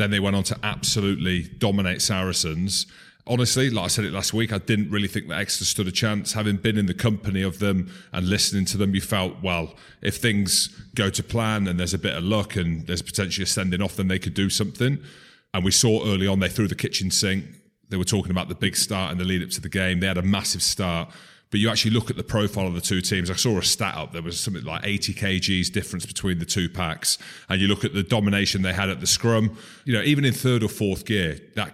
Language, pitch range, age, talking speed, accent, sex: English, 90-110 Hz, 30-49, 255 wpm, British, male